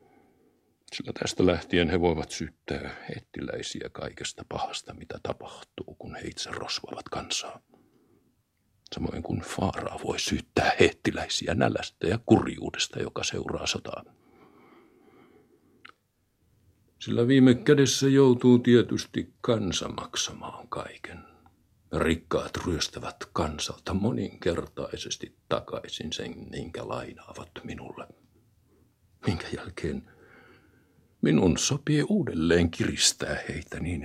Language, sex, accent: Finnish, male, native